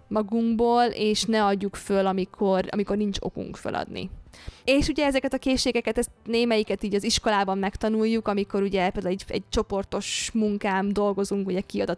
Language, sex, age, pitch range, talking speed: Hungarian, female, 20-39, 200-235 Hz, 155 wpm